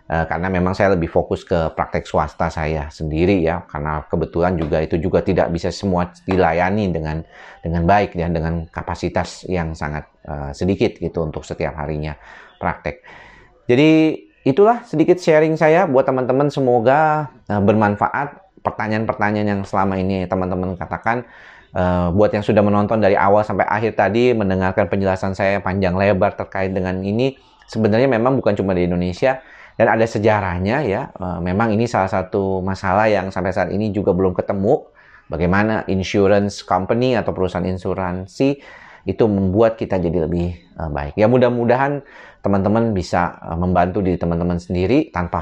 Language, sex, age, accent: Indonesian, male, 30-49, native